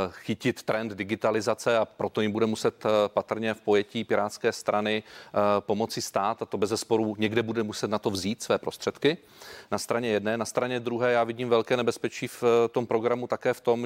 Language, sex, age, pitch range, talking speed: Czech, male, 30-49, 105-120 Hz, 185 wpm